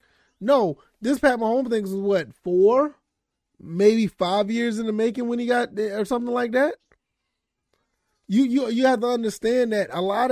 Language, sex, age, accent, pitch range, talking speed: English, male, 20-39, American, 195-235 Hz, 180 wpm